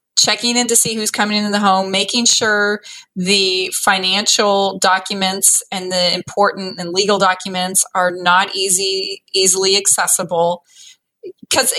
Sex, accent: female, American